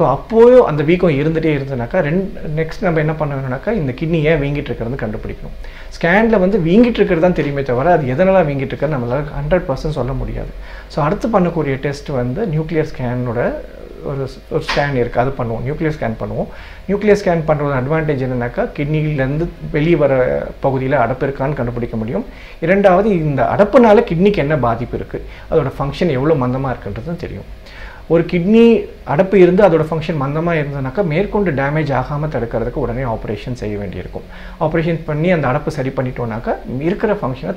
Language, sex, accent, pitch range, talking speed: Tamil, male, native, 125-175 Hz, 155 wpm